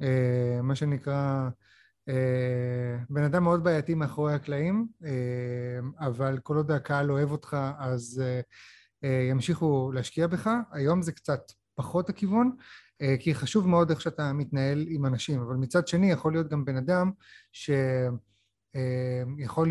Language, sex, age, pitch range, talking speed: English, male, 30-49, 130-165 Hz, 105 wpm